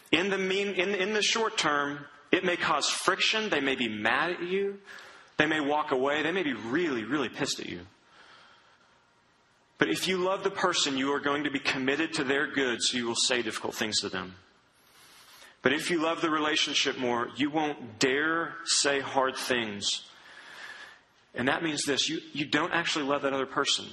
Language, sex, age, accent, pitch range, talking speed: English, male, 30-49, American, 120-155 Hz, 190 wpm